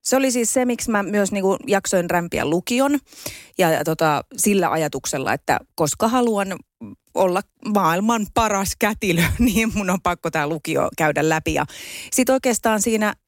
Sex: female